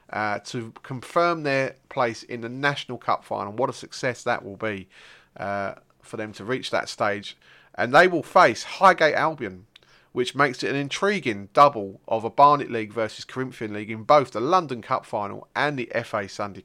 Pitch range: 105-150 Hz